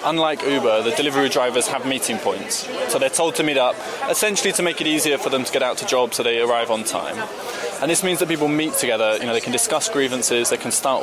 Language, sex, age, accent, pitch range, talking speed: German, male, 20-39, British, 110-150 Hz, 255 wpm